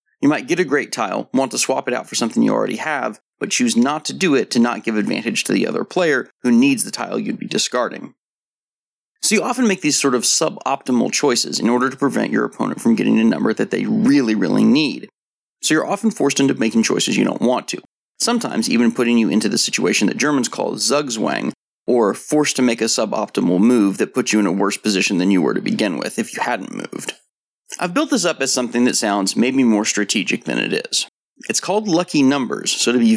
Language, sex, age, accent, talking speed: English, male, 30-49, American, 230 wpm